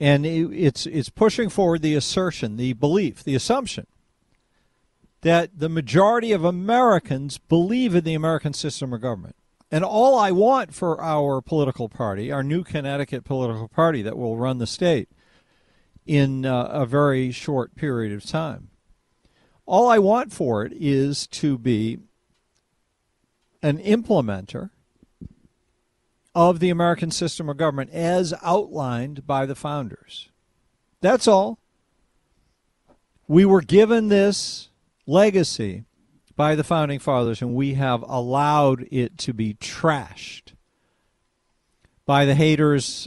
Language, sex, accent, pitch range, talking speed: English, male, American, 130-175 Hz, 130 wpm